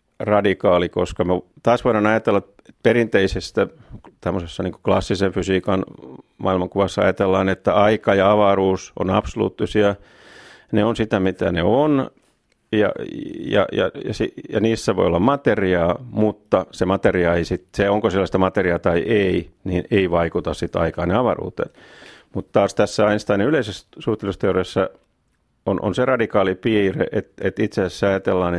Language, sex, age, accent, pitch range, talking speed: Finnish, male, 40-59, native, 90-105 Hz, 145 wpm